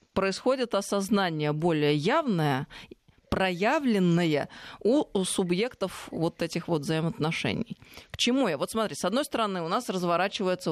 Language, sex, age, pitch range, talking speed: Russian, female, 20-39, 150-195 Hz, 130 wpm